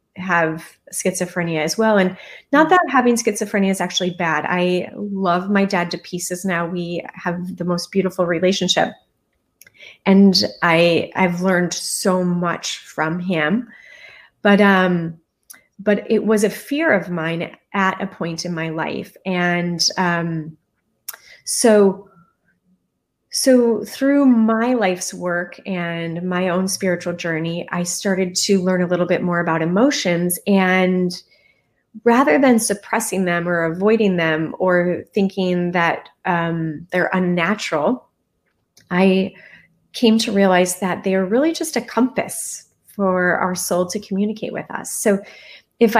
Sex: female